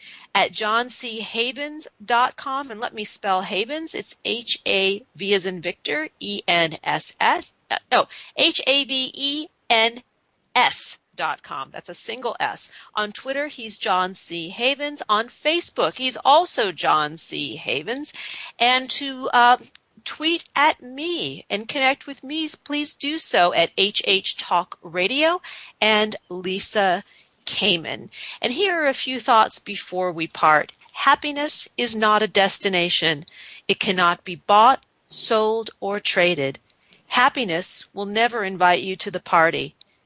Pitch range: 180-255 Hz